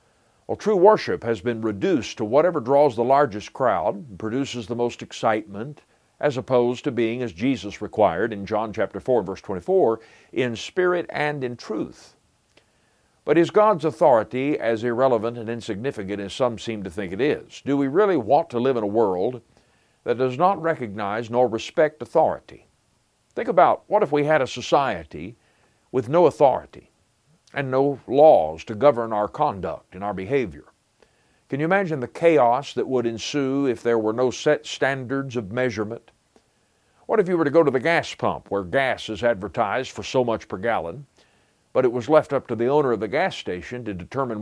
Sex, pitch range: male, 110-145 Hz